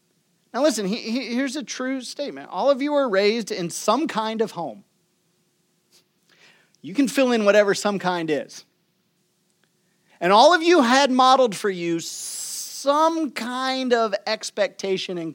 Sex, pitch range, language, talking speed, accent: male, 185-265 Hz, English, 145 wpm, American